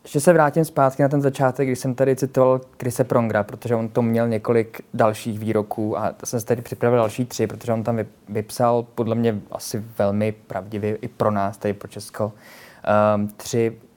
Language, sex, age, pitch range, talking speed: Czech, male, 20-39, 110-120 Hz, 185 wpm